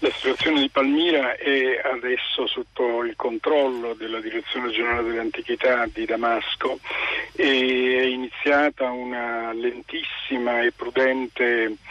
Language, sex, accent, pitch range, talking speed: Italian, male, native, 120-145 Hz, 110 wpm